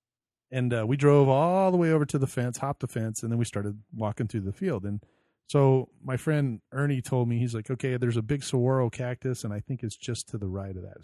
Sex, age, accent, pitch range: male, 40-59, American, 115-140 Hz